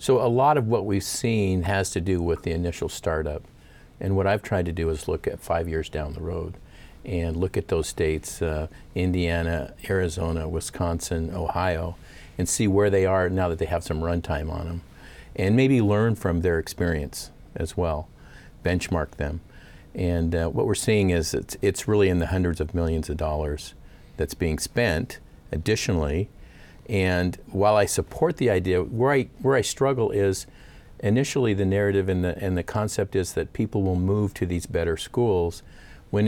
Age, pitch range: 50-69, 85-100 Hz